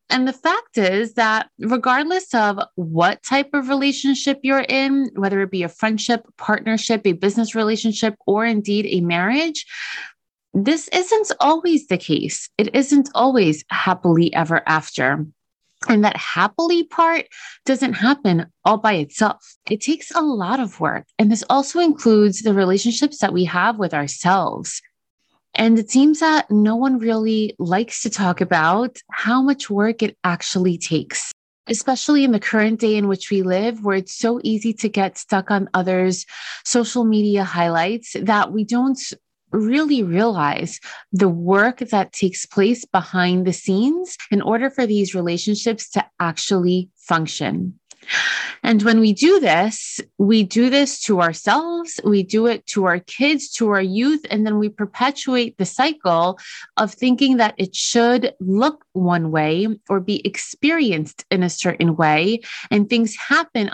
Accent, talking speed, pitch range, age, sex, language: American, 155 wpm, 190-255 Hz, 20-39, female, English